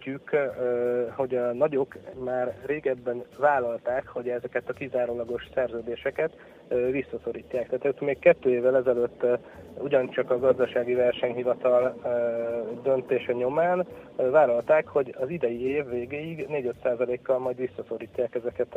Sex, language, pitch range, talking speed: male, Hungarian, 120-130 Hz, 110 wpm